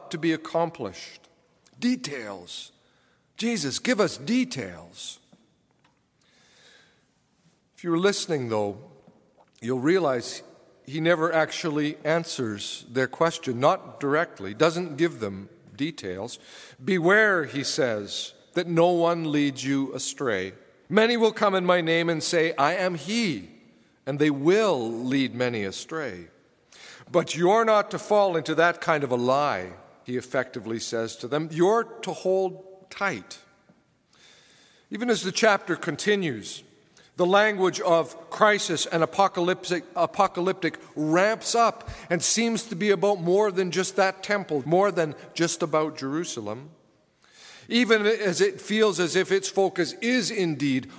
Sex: male